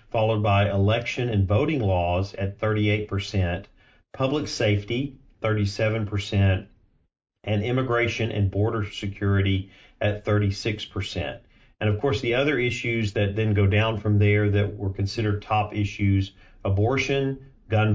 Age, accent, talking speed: 40-59, American, 125 wpm